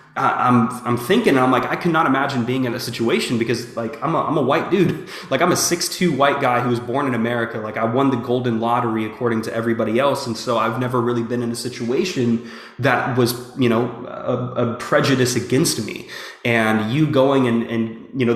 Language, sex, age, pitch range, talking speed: English, male, 20-39, 115-135 Hz, 215 wpm